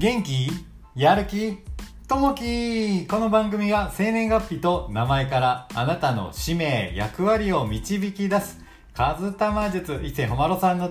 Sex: male